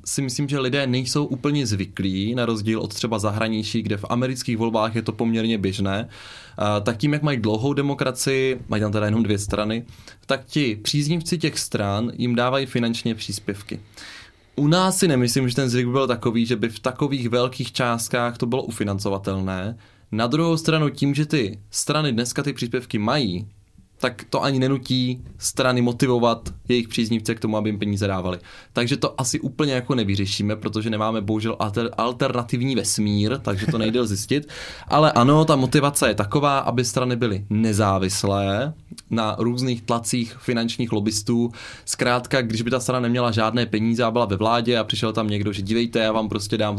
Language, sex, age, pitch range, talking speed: Czech, male, 20-39, 105-130 Hz, 175 wpm